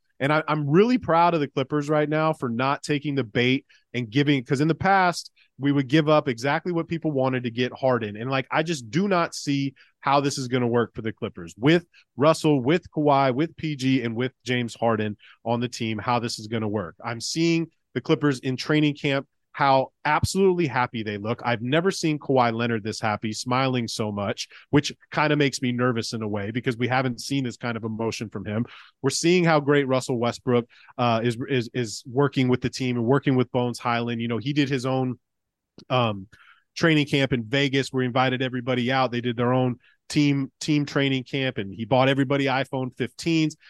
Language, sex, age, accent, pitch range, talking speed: English, male, 30-49, American, 120-150 Hz, 215 wpm